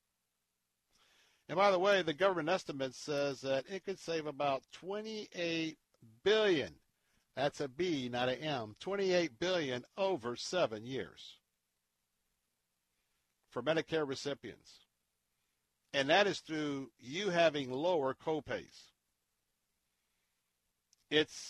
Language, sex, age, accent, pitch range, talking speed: English, male, 60-79, American, 115-165 Hz, 105 wpm